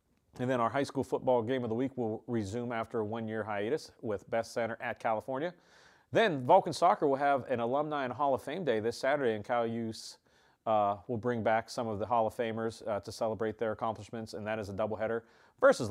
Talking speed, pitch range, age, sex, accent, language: 225 wpm, 105-120 Hz, 40-59, male, American, English